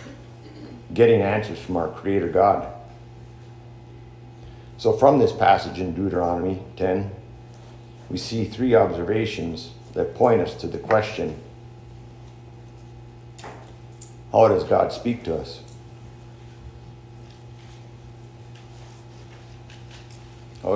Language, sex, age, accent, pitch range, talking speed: English, male, 50-69, American, 110-120 Hz, 85 wpm